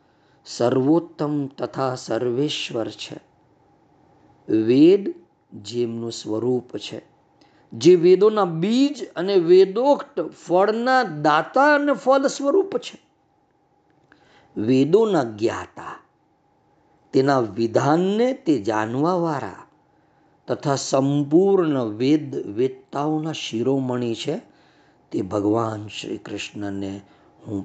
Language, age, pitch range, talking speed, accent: Gujarati, 50-69, 115-165 Hz, 80 wpm, native